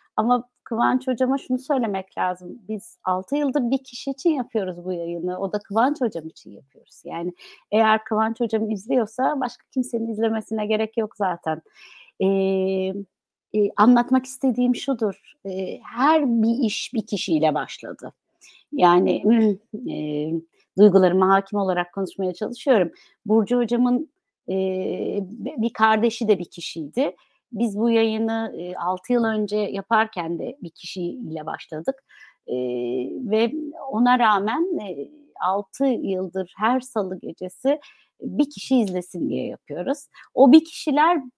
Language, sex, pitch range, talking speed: Turkish, female, 190-255 Hz, 120 wpm